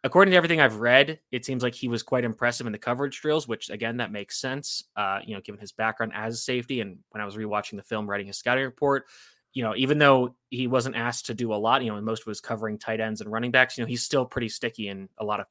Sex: male